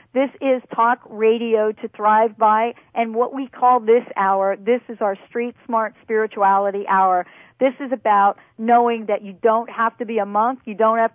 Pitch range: 200-240 Hz